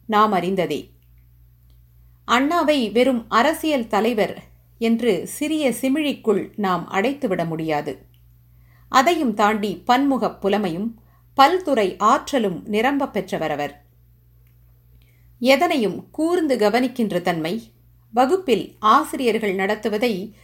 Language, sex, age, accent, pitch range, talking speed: Tamil, female, 50-69, native, 175-255 Hz, 75 wpm